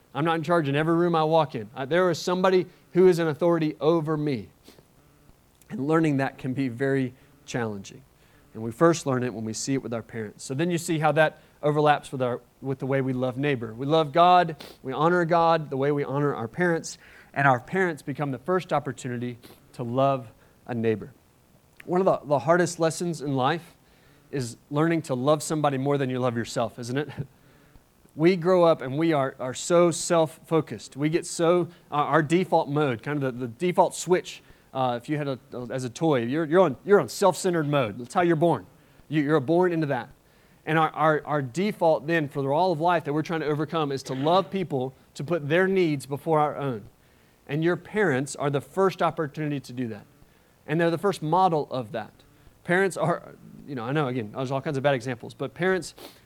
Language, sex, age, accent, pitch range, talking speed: English, male, 30-49, American, 130-170 Hz, 215 wpm